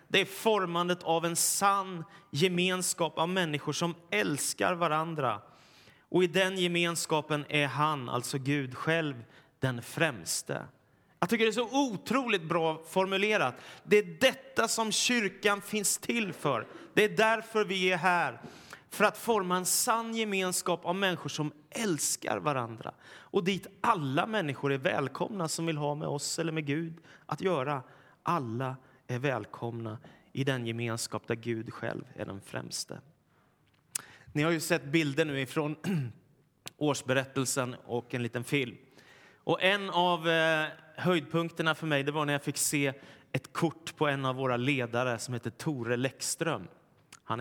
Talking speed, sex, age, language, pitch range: 150 wpm, male, 30-49, Swedish, 130-180 Hz